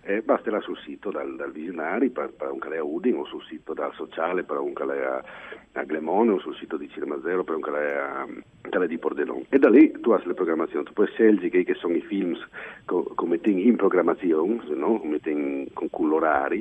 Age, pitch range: 50-69, 320-405 Hz